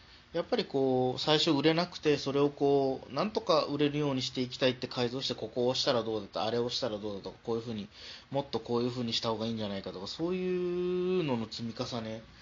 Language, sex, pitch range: Japanese, male, 105-150 Hz